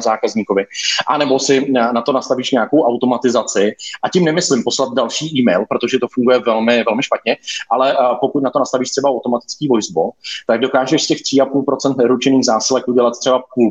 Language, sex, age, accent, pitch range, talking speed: Czech, male, 30-49, native, 110-130 Hz, 170 wpm